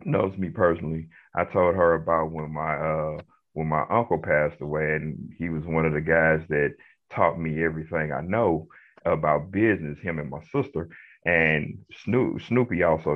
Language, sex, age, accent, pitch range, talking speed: English, male, 30-49, American, 80-100 Hz, 175 wpm